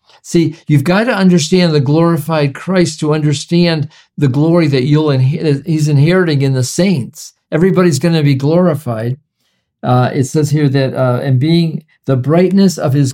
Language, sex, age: English, male, 50-69